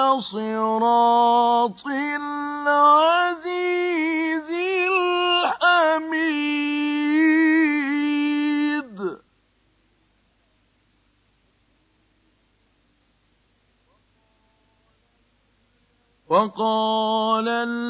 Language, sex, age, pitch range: Arabic, male, 50-69, 180-275 Hz